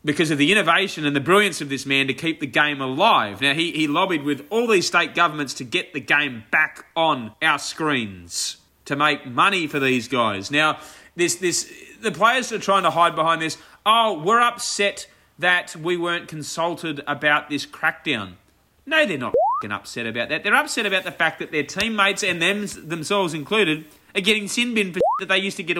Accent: Australian